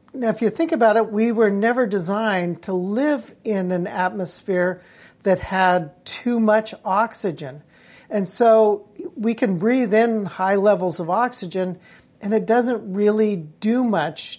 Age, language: 50-69, English